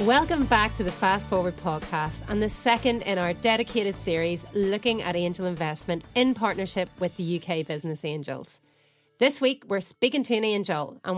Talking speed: 175 wpm